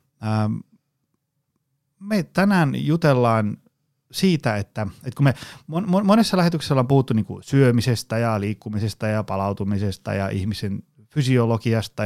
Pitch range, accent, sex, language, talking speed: 105-135 Hz, native, male, Finnish, 100 wpm